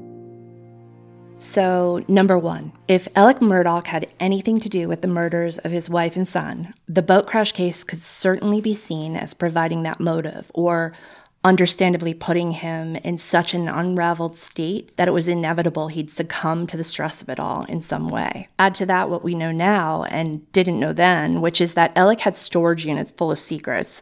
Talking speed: 185 wpm